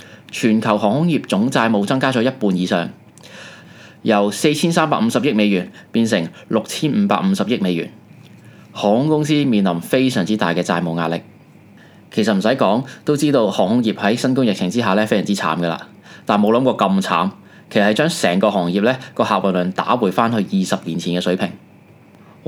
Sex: male